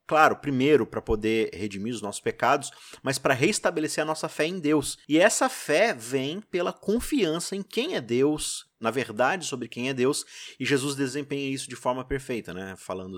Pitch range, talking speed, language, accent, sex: 125-170 Hz, 185 wpm, Portuguese, Brazilian, male